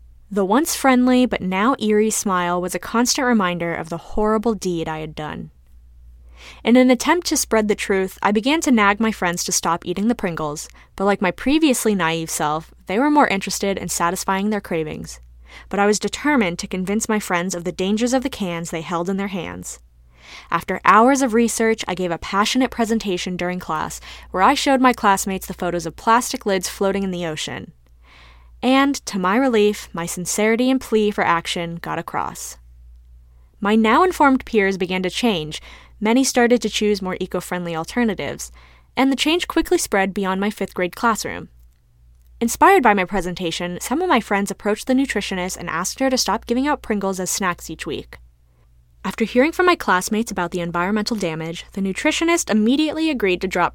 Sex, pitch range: female, 170-235 Hz